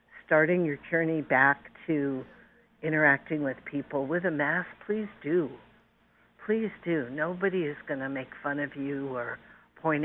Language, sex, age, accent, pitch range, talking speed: English, female, 50-69, American, 135-165 Hz, 150 wpm